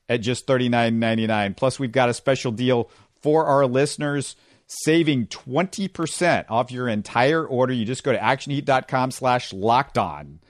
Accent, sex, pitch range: American, male, 115-145 Hz